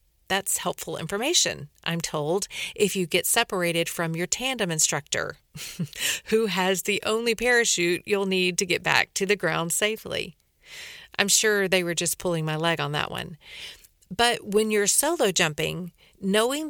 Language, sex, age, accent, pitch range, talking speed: English, female, 40-59, American, 170-210 Hz, 160 wpm